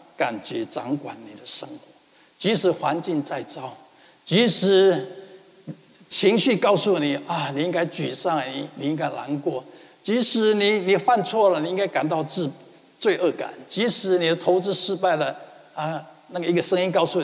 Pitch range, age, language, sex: 155-205 Hz, 60-79, Chinese, male